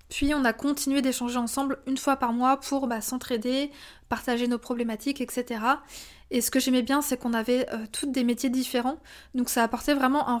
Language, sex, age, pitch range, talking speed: French, female, 20-39, 240-270 Hz, 200 wpm